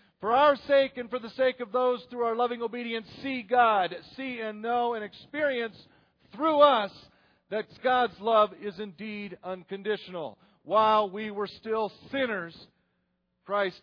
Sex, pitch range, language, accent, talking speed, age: male, 190-275 Hz, English, American, 150 wpm, 40-59